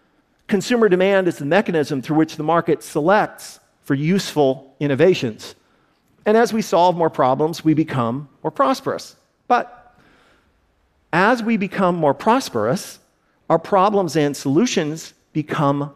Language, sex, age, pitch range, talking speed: Arabic, male, 50-69, 140-200 Hz, 130 wpm